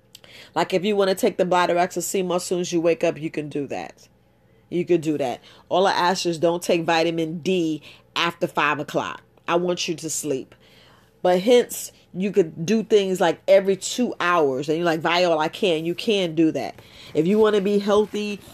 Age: 40-59